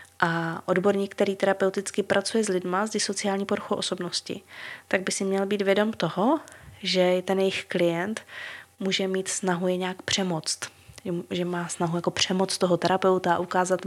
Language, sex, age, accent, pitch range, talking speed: Czech, female, 20-39, native, 180-205 Hz, 160 wpm